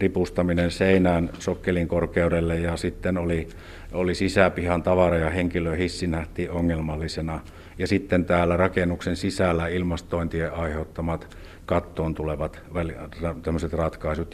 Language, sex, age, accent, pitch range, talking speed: Finnish, male, 60-79, native, 85-95 Hz, 105 wpm